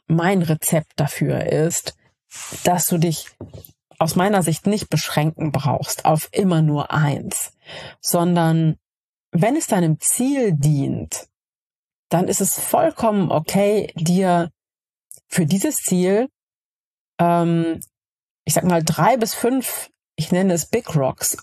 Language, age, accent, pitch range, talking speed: German, 30-49, German, 155-200 Hz, 125 wpm